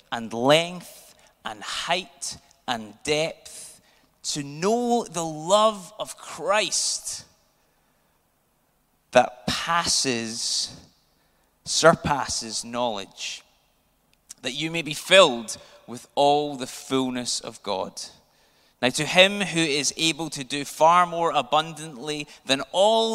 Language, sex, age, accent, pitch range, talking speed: English, male, 30-49, British, 125-180 Hz, 105 wpm